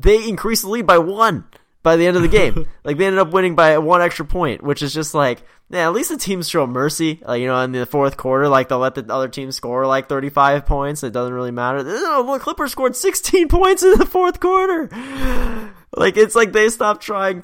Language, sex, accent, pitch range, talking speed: English, male, American, 110-170 Hz, 235 wpm